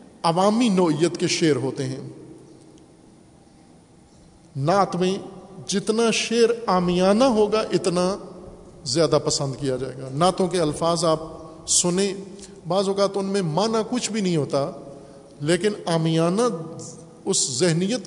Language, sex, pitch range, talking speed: Urdu, male, 155-190 Hz, 120 wpm